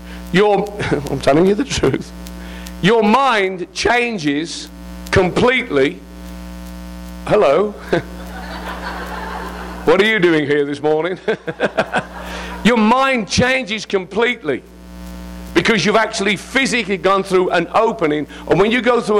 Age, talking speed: 50-69, 110 wpm